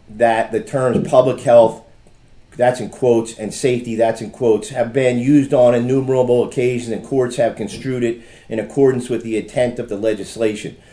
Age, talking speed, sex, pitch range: 40-59, 175 wpm, male, 115-130 Hz